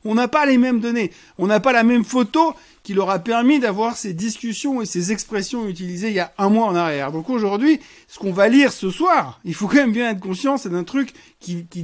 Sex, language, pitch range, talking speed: male, French, 170-245 Hz, 255 wpm